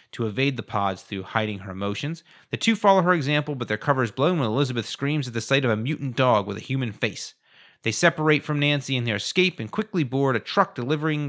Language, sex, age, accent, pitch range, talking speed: English, male, 30-49, American, 110-140 Hz, 240 wpm